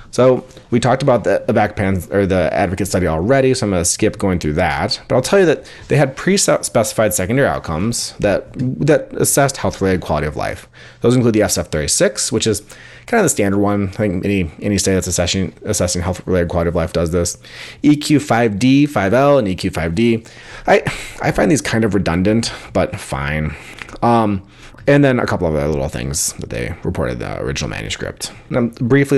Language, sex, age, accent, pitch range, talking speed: English, male, 30-49, American, 85-120 Hz, 185 wpm